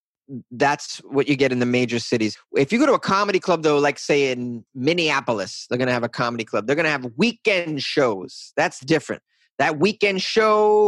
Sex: male